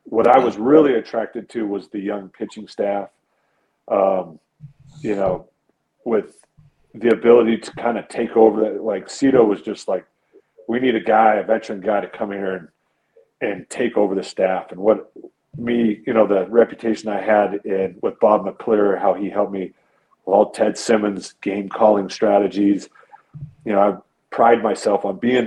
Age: 40-59